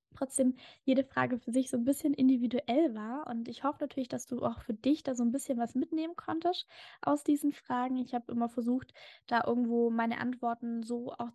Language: German